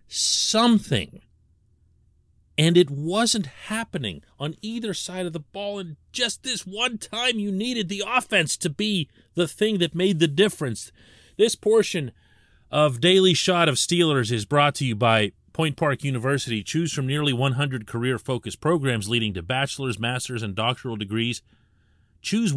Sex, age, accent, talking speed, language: male, 40-59, American, 150 wpm, English